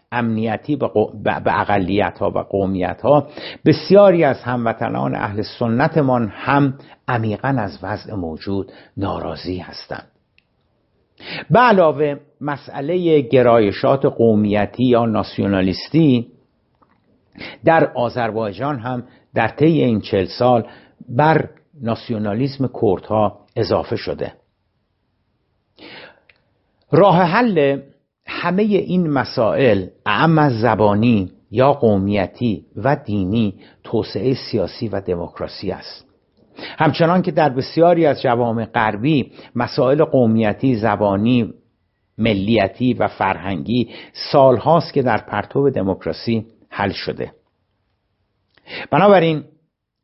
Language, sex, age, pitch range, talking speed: Persian, male, 60-79, 105-145 Hz, 90 wpm